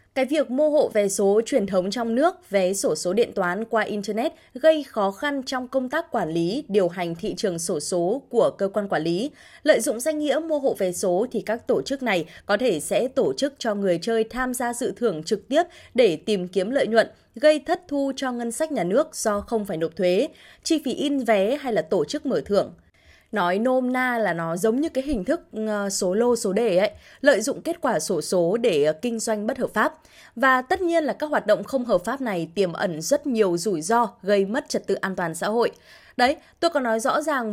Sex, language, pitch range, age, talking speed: female, Vietnamese, 200-280 Hz, 20-39, 240 wpm